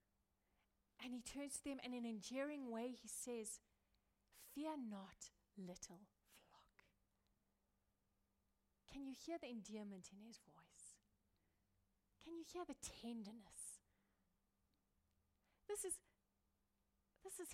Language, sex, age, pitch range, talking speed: English, female, 30-49, 175-245 Hz, 115 wpm